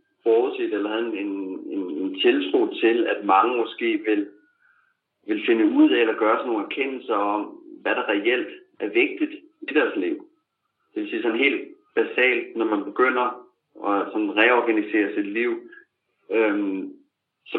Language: Danish